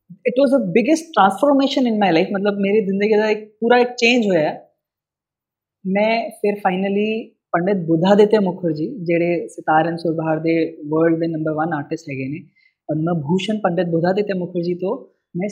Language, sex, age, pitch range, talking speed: Punjabi, female, 20-39, 170-245 Hz, 160 wpm